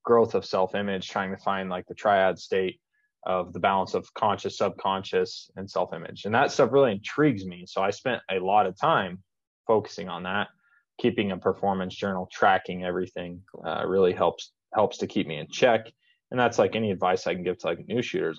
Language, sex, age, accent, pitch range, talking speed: English, male, 20-39, American, 95-145 Hz, 200 wpm